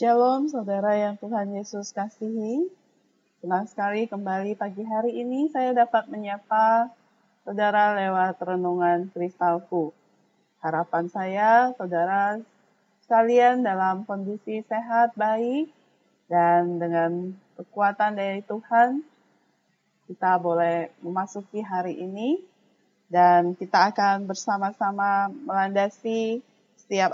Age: 30-49